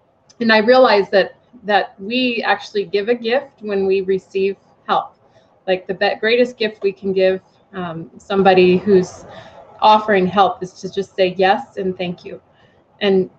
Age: 20-39